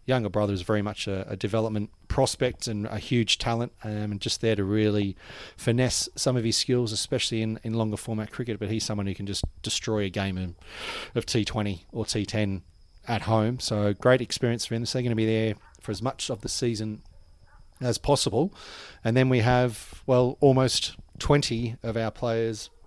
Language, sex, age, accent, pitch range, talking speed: English, male, 30-49, Australian, 105-115 Hz, 195 wpm